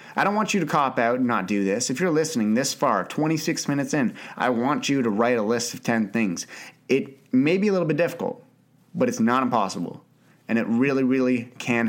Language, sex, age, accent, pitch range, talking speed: English, male, 30-49, American, 110-140 Hz, 225 wpm